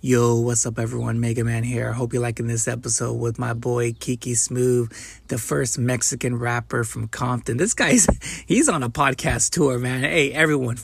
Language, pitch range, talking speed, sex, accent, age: English, 120-140 Hz, 185 wpm, male, American, 20-39